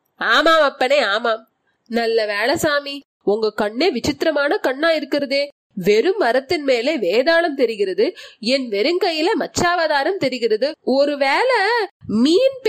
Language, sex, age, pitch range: Tamil, female, 20-39, 255-330 Hz